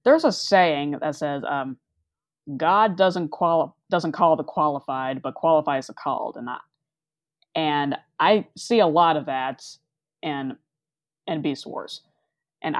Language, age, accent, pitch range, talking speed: English, 20-39, American, 145-175 Hz, 145 wpm